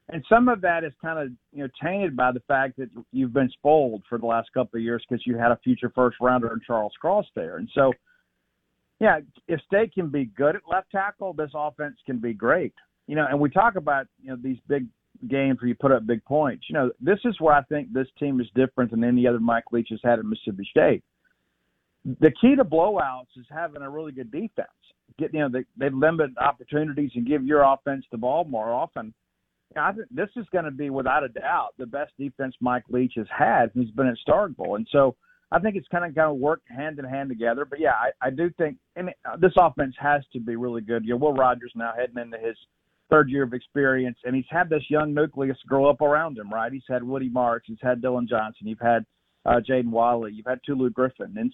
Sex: male